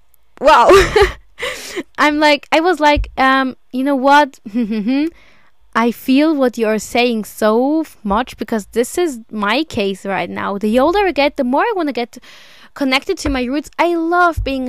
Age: 10-29